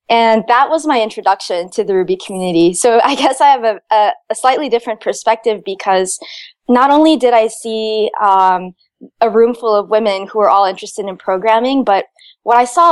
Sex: female